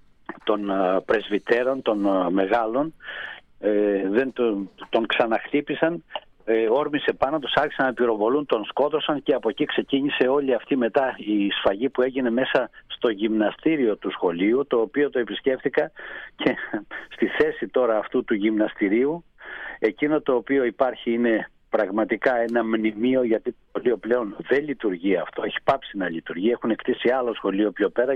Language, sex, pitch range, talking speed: Greek, male, 110-135 Hz, 150 wpm